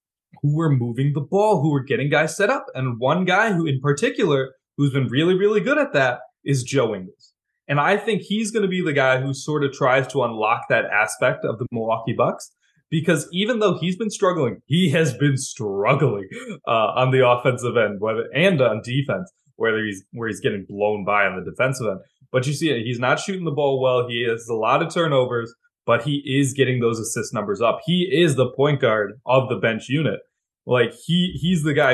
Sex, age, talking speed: male, 20-39, 215 wpm